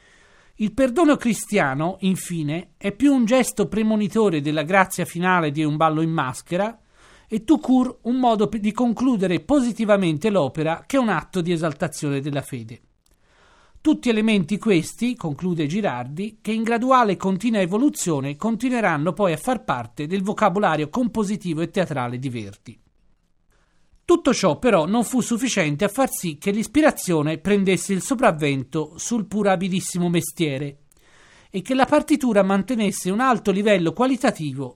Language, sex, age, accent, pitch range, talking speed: Italian, male, 40-59, native, 155-225 Hz, 140 wpm